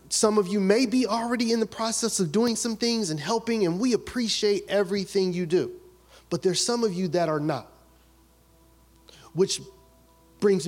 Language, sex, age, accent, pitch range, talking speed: English, male, 30-49, American, 175-255 Hz, 175 wpm